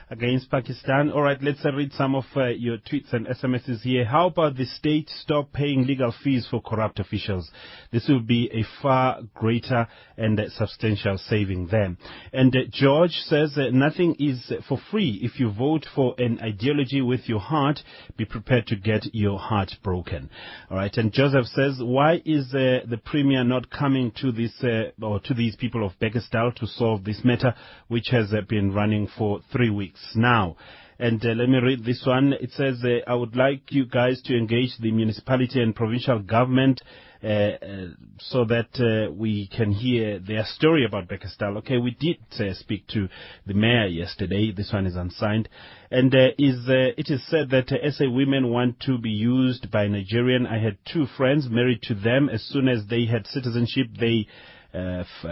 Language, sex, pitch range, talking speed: English, male, 110-135 Hz, 190 wpm